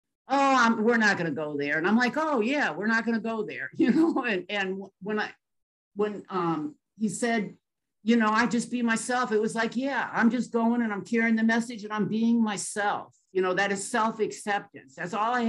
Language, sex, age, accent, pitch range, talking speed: English, male, 50-69, American, 195-235 Hz, 230 wpm